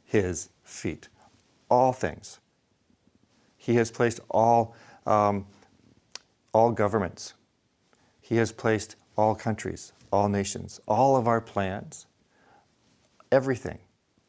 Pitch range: 95-125 Hz